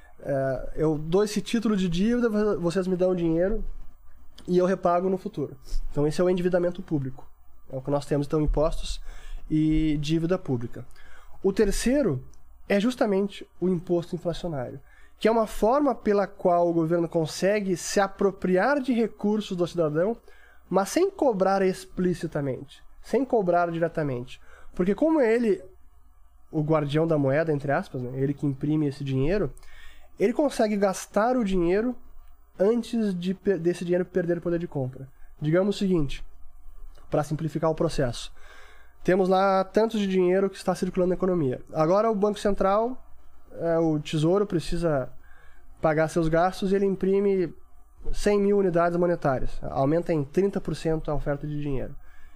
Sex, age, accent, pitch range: male, 20-39, Brazilian, 145-195 Hz